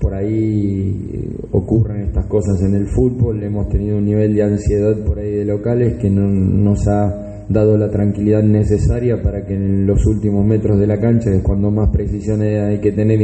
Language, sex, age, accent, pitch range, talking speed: Spanish, male, 20-39, Argentinian, 100-110 Hz, 190 wpm